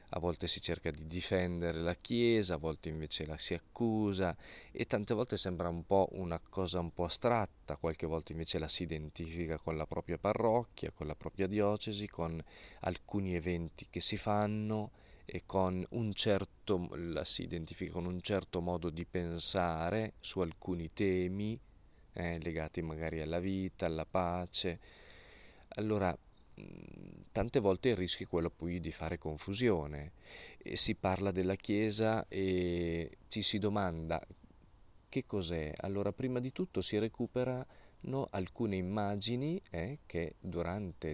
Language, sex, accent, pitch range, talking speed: Italian, male, native, 85-105 Hz, 145 wpm